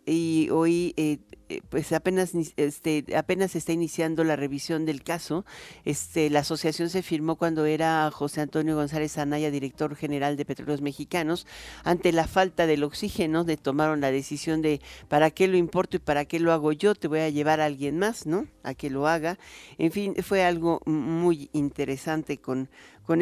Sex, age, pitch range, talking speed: male, 50-69, 150-170 Hz, 180 wpm